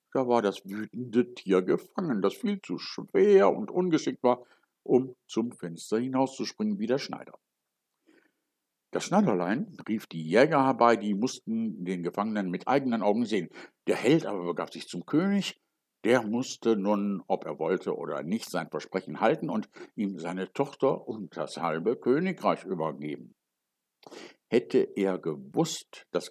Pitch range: 95-145 Hz